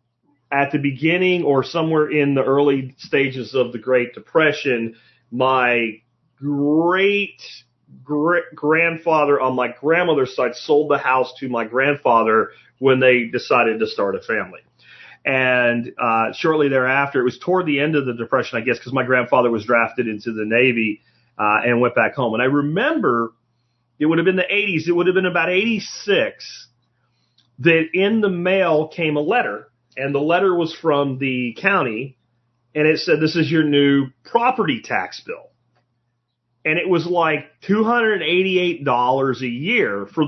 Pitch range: 120-175 Hz